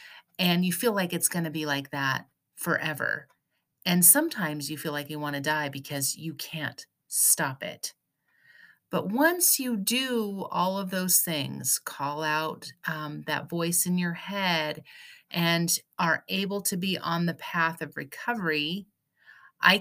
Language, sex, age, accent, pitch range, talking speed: English, female, 30-49, American, 160-195 Hz, 160 wpm